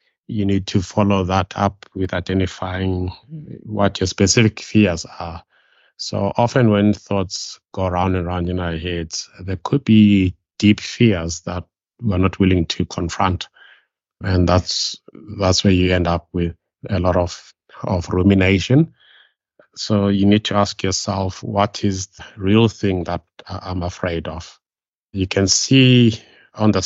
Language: English